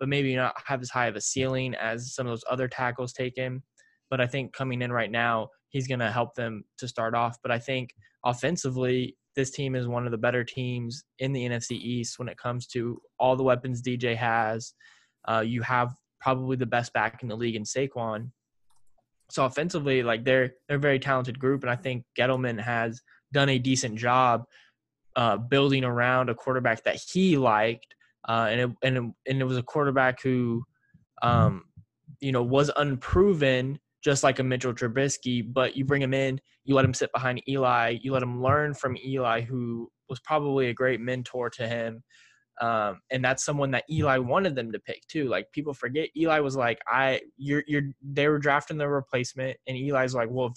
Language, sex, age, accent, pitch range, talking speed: English, male, 10-29, American, 120-135 Hz, 205 wpm